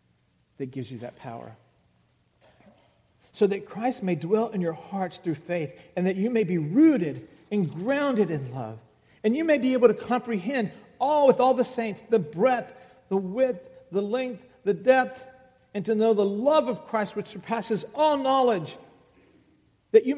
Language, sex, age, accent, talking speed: English, male, 50-69, American, 175 wpm